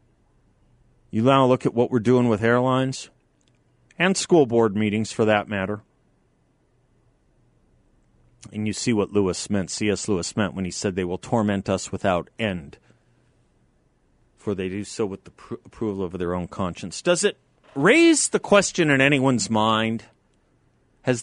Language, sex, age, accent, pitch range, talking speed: English, male, 40-59, American, 105-135 Hz, 155 wpm